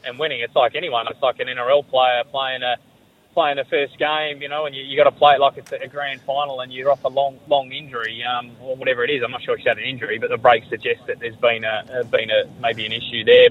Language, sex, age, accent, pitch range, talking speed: English, male, 20-39, Australian, 130-155 Hz, 275 wpm